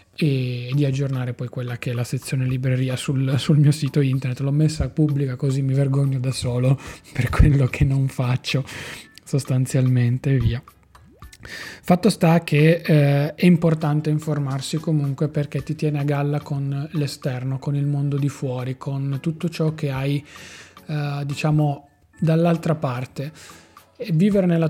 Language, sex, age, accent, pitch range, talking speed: Italian, male, 30-49, native, 135-155 Hz, 155 wpm